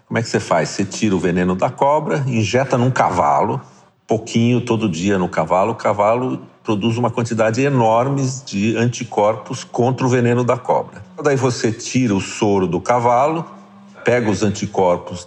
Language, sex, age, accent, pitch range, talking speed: Portuguese, male, 50-69, Brazilian, 105-145 Hz, 165 wpm